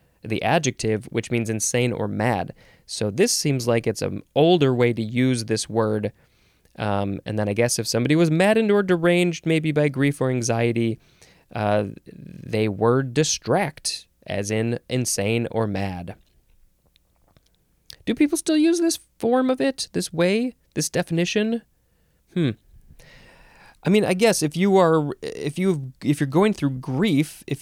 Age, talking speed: 20-39, 155 wpm